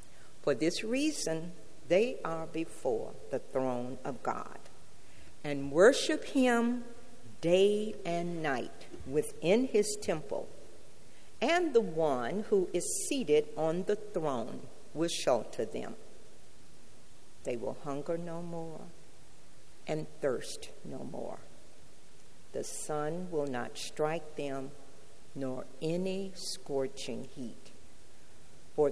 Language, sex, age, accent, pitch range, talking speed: English, female, 50-69, American, 140-205 Hz, 105 wpm